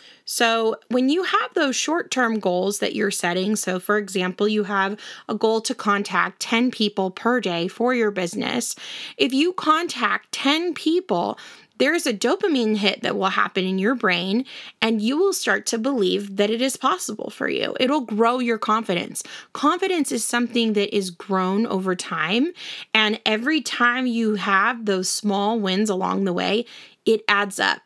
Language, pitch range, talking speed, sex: English, 205-255 Hz, 170 wpm, female